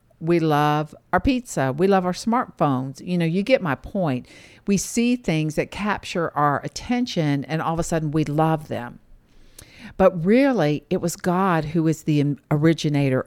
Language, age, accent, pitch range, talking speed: English, 50-69, American, 135-200 Hz, 170 wpm